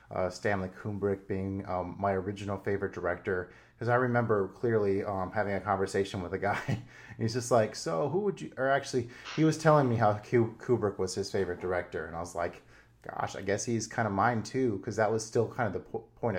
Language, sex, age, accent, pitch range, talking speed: English, male, 30-49, American, 95-115 Hz, 225 wpm